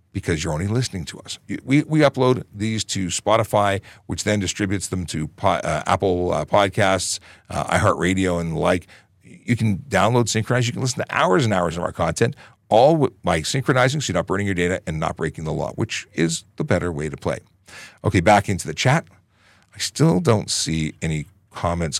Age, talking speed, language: 50-69, 200 wpm, English